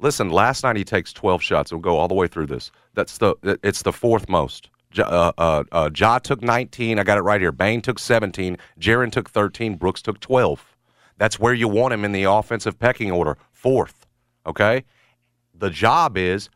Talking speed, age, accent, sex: 200 wpm, 40-59, American, male